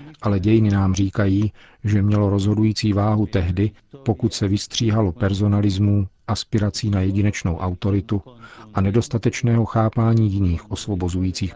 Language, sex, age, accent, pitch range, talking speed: Czech, male, 40-59, native, 95-110 Hz, 115 wpm